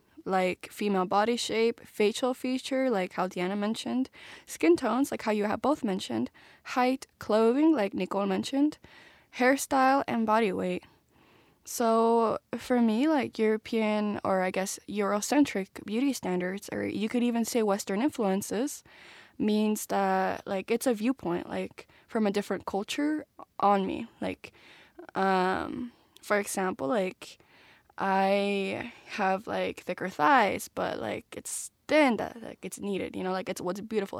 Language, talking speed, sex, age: English, 145 wpm, female, 10-29